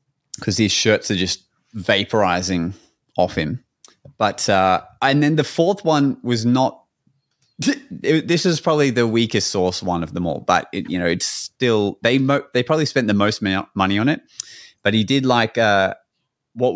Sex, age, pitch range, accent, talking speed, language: male, 20-39, 95-120 Hz, Australian, 180 wpm, English